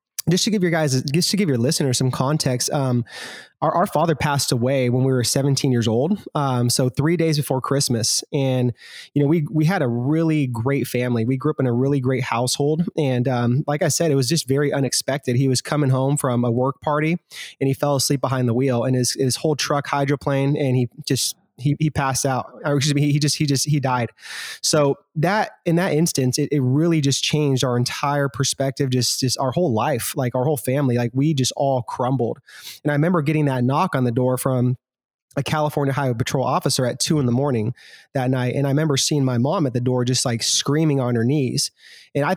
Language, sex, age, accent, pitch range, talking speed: English, male, 20-39, American, 125-150 Hz, 230 wpm